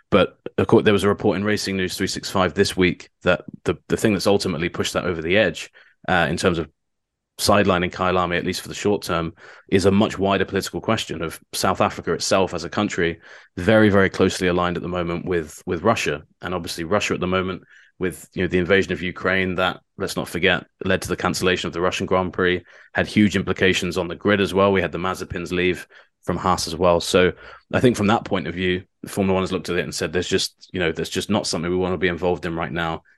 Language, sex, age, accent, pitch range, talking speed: English, male, 20-39, British, 90-100 Hz, 245 wpm